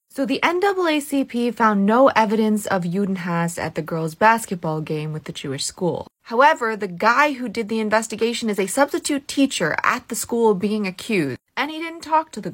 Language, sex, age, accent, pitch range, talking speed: English, female, 20-39, American, 170-215 Hz, 185 wpm